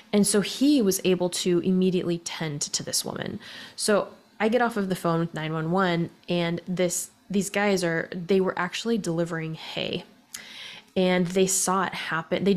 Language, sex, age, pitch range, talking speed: English, female, 20-39, 165-195 Hz, 170 wpm